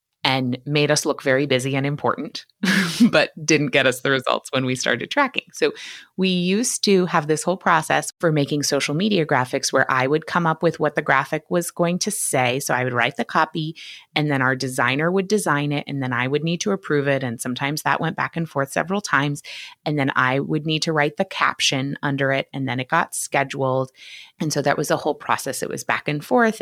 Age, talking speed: 30-49, 230 wpm